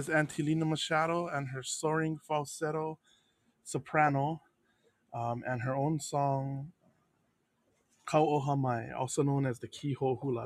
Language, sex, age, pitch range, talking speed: English, male, 20-39, 125-155 Hz, 115 wpm